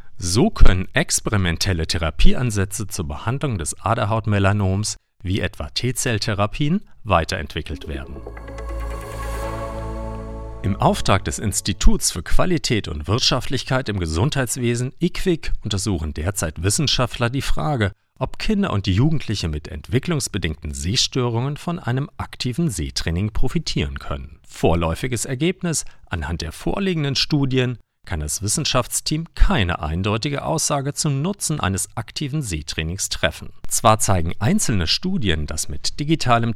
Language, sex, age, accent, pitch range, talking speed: German, male, 40-59, German, 90-135 Hz, 110 wpm